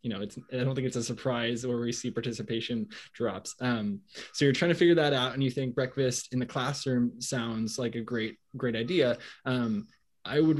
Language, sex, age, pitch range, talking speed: English, male, 20-39, 115-135 Hz, 215 wpm